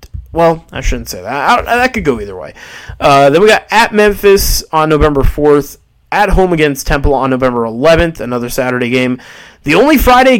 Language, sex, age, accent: English, male, 20-39, American